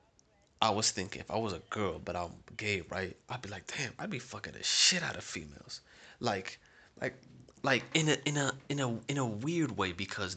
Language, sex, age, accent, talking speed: English, male, 20-39, American, 220 wpm